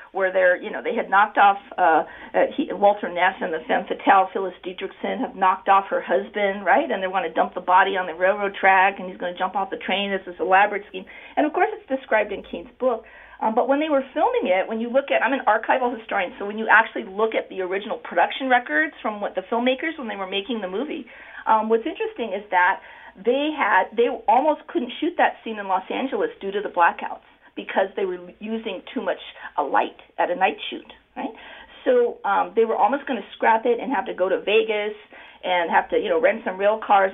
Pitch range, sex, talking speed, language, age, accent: 200-275 Hz, female, 235 wpm, English, 40-59, American